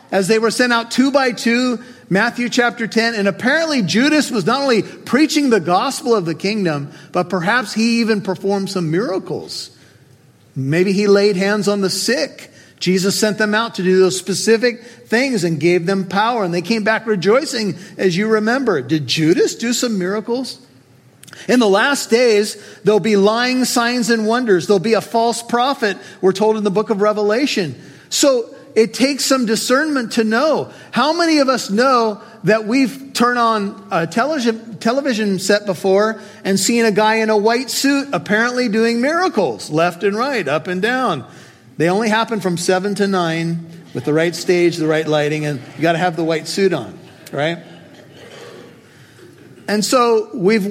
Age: 40-59